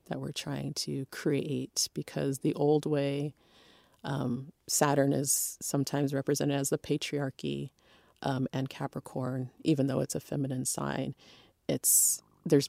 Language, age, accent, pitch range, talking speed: English, 30-49, American, 135-175 Hz, 130 wpm